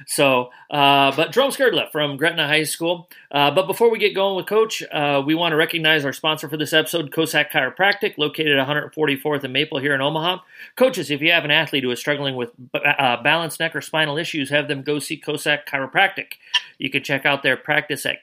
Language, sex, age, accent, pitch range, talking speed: English, male, 40-59, American, 145-175 Hz, 220 wpm